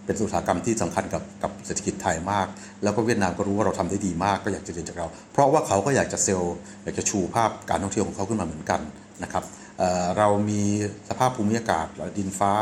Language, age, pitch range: Thai, 60-79, 90-110 Hz